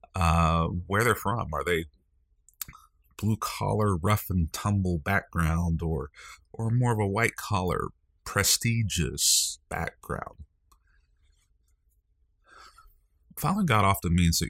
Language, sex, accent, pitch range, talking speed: English, male, American, 75-95 Hz, 90 wpm